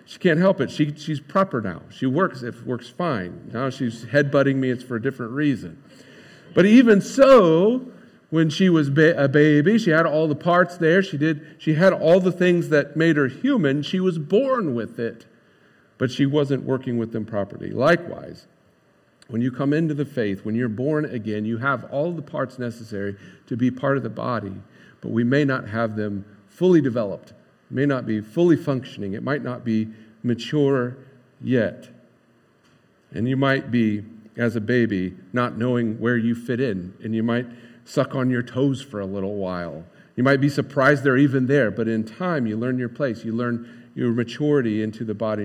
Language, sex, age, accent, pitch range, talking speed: English, male, 50-69, American, 115-150 Hz, 195 wpm